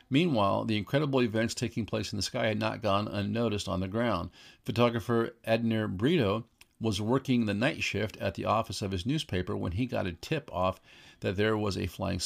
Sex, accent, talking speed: male, American, 200 wpm